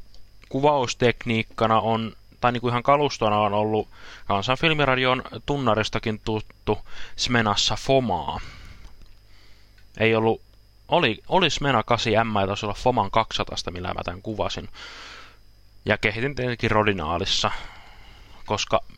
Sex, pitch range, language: male, 100-115 Hz, Finnish